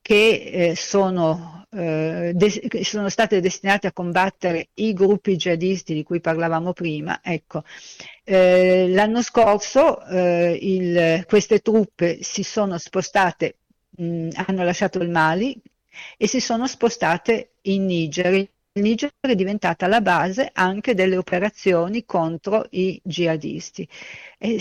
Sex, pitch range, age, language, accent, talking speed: female, 170-205 Hz, 50-69, Italian, native, 120 wpm